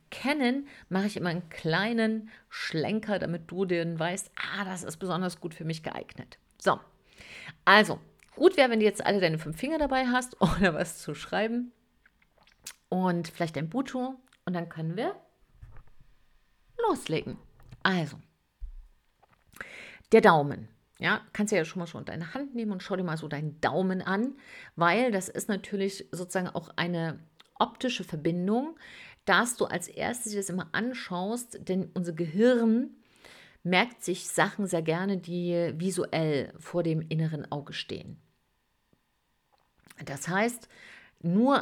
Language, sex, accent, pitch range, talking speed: German, female, German, 170-220 Hz, 145 wpm